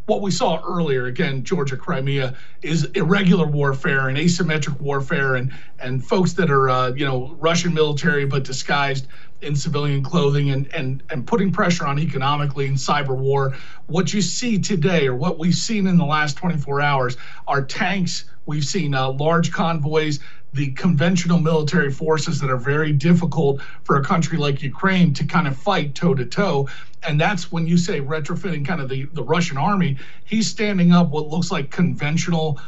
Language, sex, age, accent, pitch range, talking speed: English, male, 40-59, American, 135-175 Hz, 180 wpm